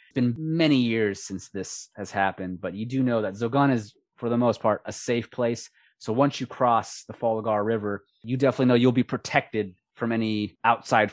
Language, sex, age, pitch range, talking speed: English, male, 20-39, 100-125 Hz, 205 wpm